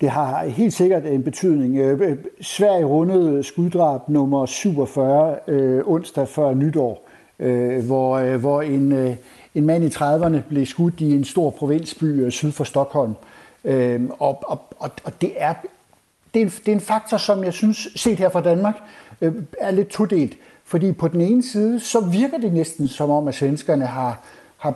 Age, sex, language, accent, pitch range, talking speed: 60-79, male, Danish, native, 135-170 Hz, 155 wpm